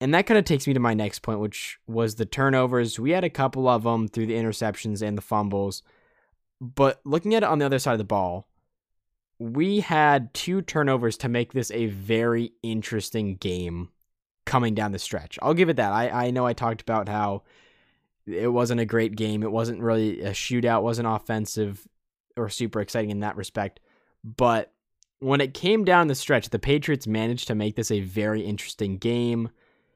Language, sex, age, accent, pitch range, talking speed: English, male, 10-29, American, 110-135 Hz, 200 wpm